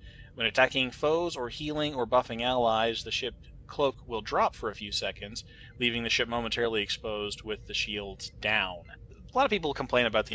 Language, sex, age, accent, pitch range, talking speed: English, male, 20-39, American, 105-120 Hz, 190 wpm